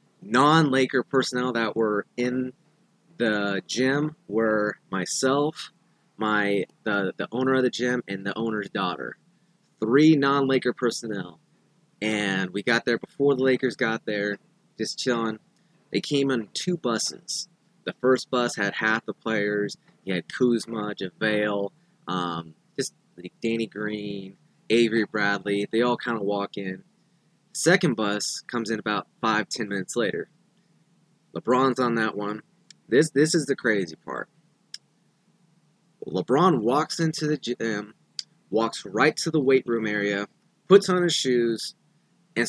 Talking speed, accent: 140 wpm, American